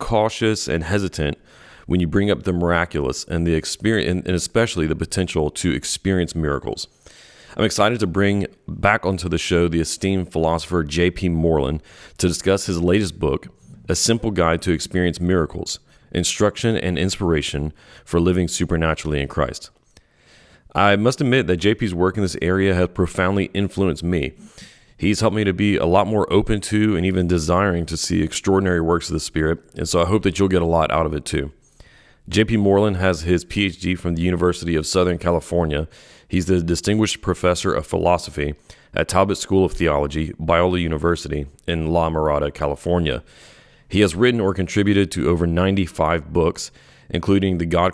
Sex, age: male, 40-59